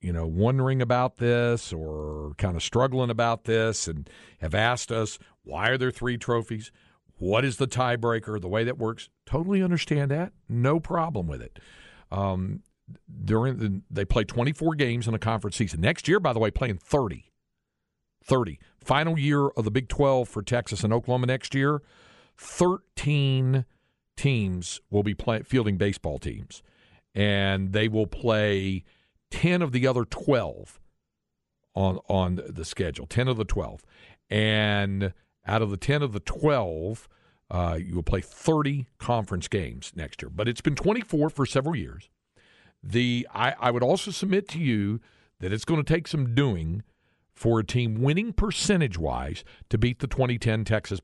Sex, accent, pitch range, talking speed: male, American, 95-130 Hz, 165 wpm